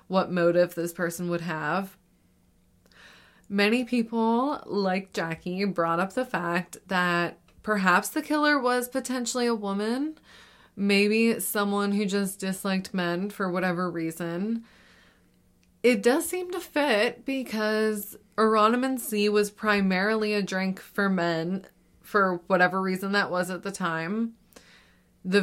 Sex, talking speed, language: female, 125 wpm, English